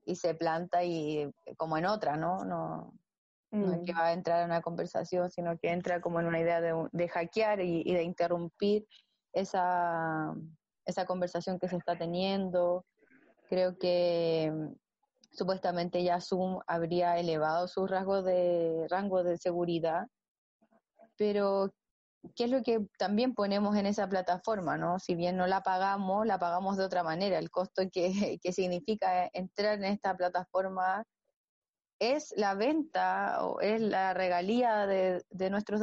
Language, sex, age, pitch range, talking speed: Spanish, female, 20-39, 175-205 Hz, 155 wpm